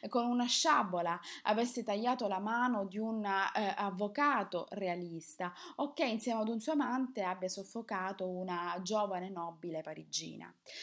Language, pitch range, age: Italian, 195-275 Hz, 20-39